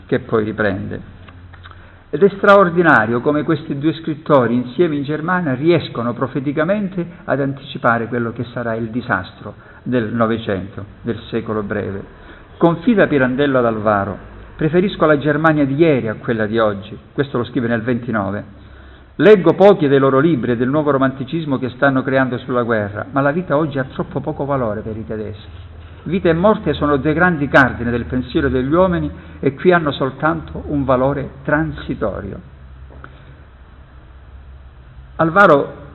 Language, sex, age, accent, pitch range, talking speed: Italian, male, 50-69, native, 110-150 Hz, 145 wpm